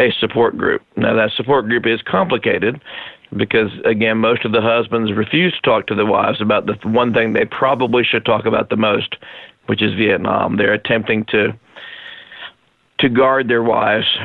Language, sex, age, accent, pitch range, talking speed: English, male, 50-69, American, 110-120 Hz, 175 wpm